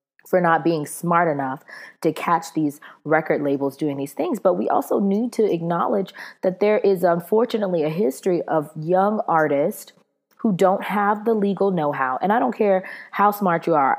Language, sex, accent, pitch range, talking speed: English, female, American, 155-205 Hz, 180 wpm